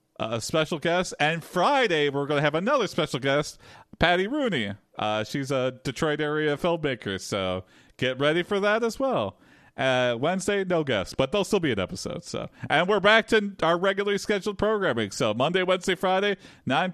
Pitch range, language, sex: 135-195 Hz, English, male